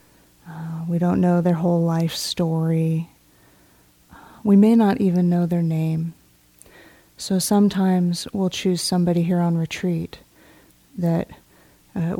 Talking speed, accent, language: 125 wpm, American, English